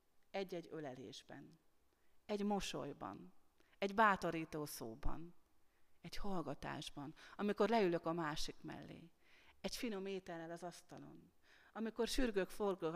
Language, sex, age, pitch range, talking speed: Hungarian, female, 30-49, 160-195 Hz, 100 wpm